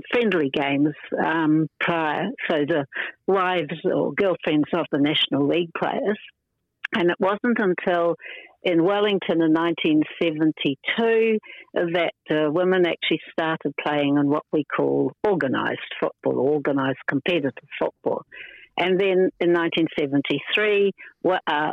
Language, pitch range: English, 155-195 Hz